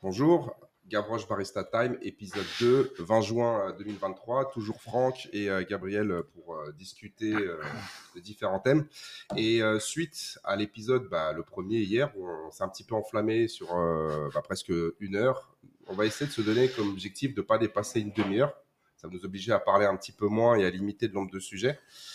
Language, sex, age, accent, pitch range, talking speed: French, male, 30-49, French, 95-125 Hz, 200 wpm